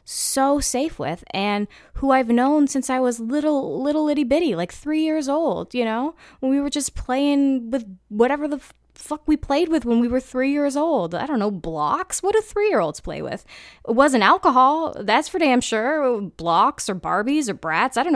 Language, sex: English, female